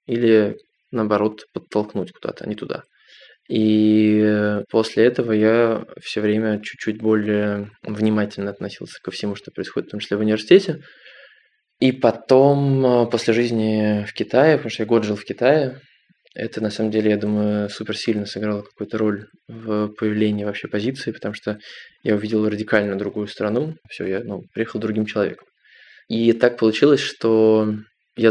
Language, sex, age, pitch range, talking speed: Russian, male, 20-39, 105-115 Hz, 155 wpm